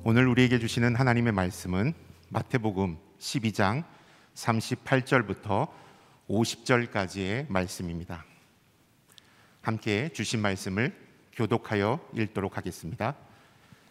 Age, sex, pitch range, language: 50-69, male, 100-125 Hz, Korean